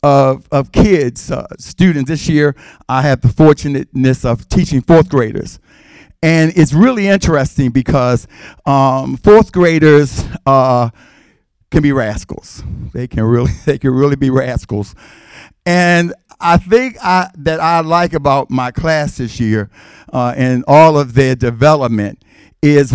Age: 50-69